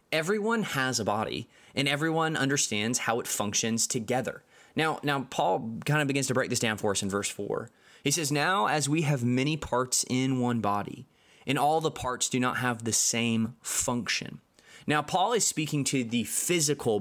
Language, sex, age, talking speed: English, male, 20-39, 190 wpm